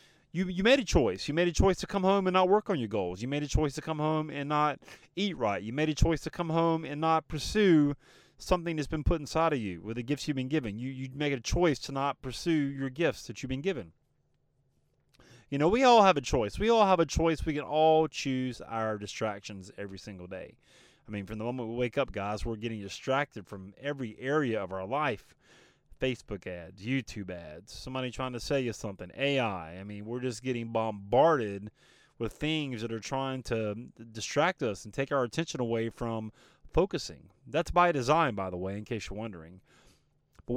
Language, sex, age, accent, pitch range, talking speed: English, male, 30-49, American, 115-165 Hz, 220 wpm